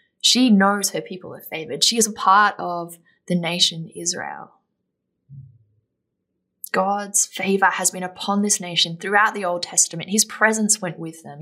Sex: female